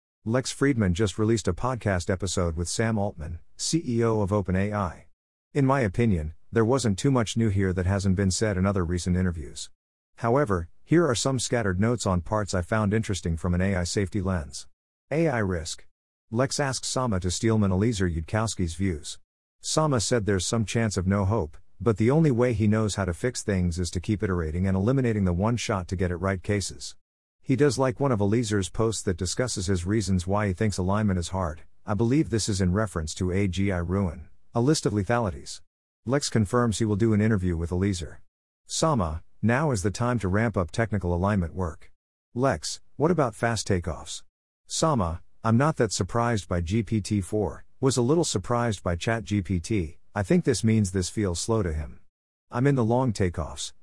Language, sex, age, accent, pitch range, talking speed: English, male, 50-69, American, 90-115 Hz, 185 wpm